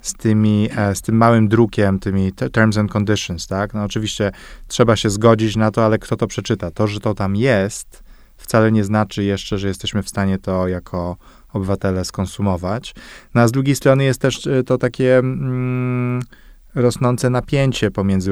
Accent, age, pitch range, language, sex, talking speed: Polish, 20-39, 95-115 Hz, English, male, 170 wpm